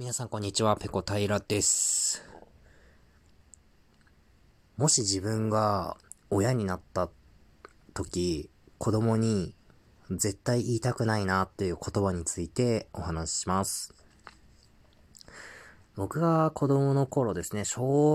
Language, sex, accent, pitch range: Japanese, male, native, 90-120 Hz